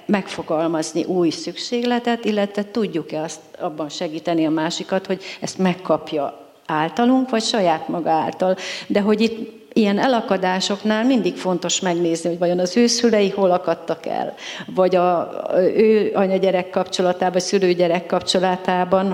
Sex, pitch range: female, 170-200 Hz